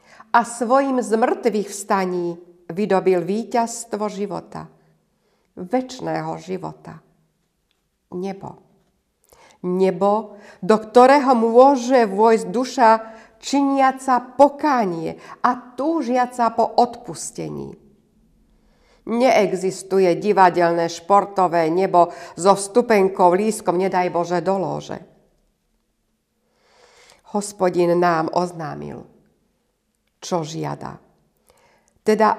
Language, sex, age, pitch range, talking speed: Slovak, female, 60-79, 180-245 Hz, 70 wpm